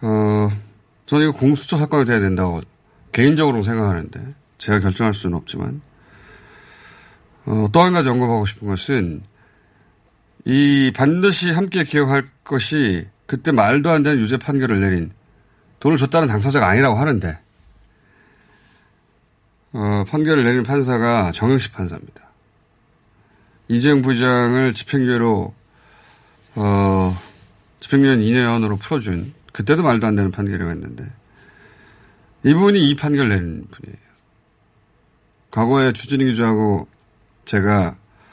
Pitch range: 100-130 Hz